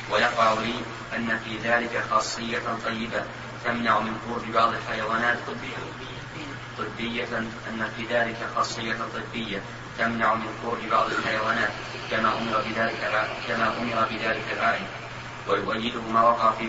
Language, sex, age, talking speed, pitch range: Arabic, male, 30-49, 125 wpm, 110-120 Hz